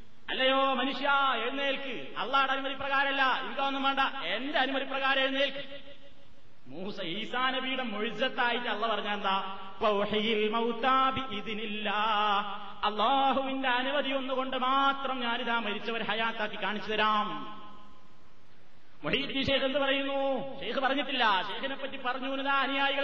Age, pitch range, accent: 30-49, 210-270 Hz, native